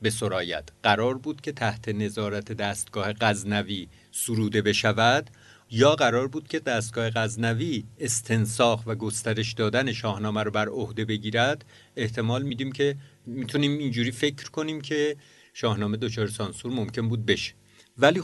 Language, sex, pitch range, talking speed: Persian, male, 105-120 Hz, 130 wpm